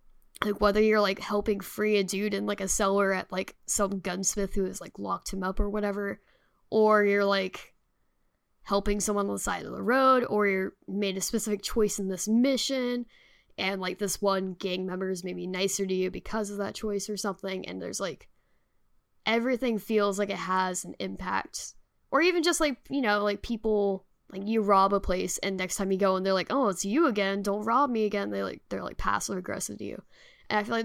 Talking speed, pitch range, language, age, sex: 220 wpm, 190-210 Hz, English, 10-29, female